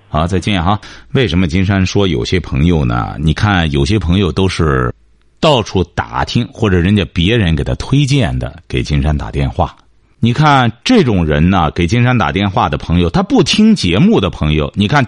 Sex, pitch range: male, 85-140 Hz